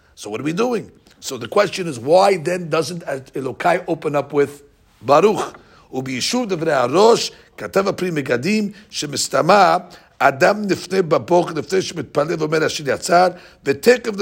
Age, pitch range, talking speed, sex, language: 60-79, 130-180 Hz, 95 wpm, male, English